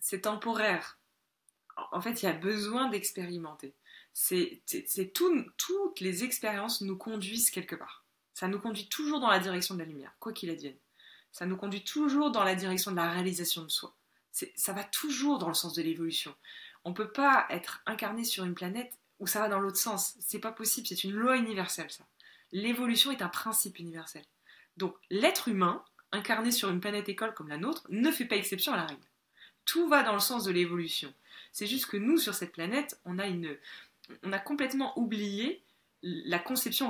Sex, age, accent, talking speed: female, 20-39, French, 200 wpm